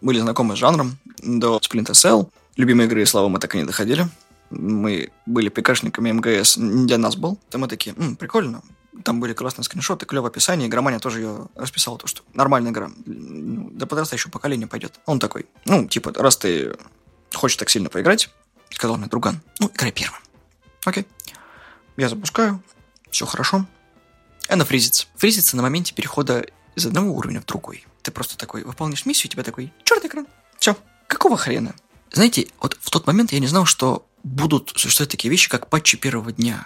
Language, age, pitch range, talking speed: Russian, 20-39, 120-190 Hz, 175 wpm